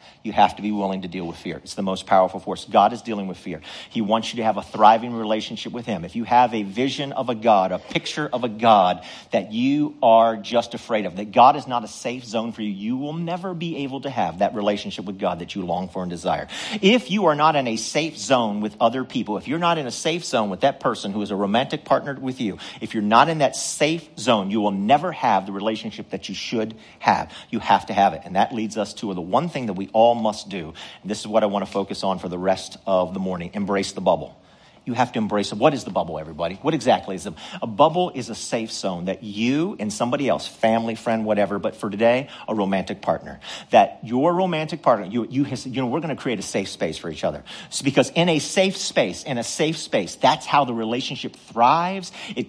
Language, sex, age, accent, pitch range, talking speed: English, male, 50-69, American, 105-160 Hz, 255 wpm